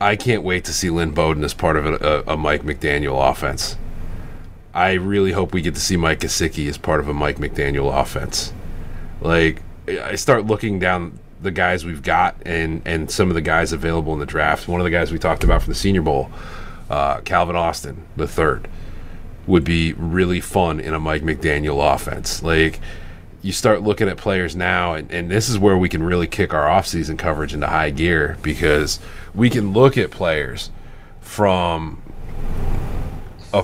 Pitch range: 80-100 Hz